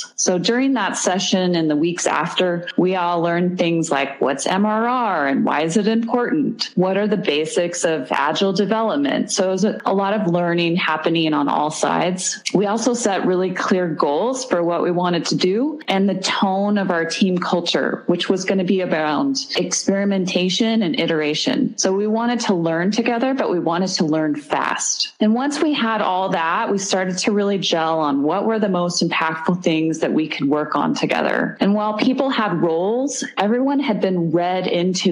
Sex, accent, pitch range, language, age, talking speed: female, American, 170-220 Hz, English, 30-49, 190 wpm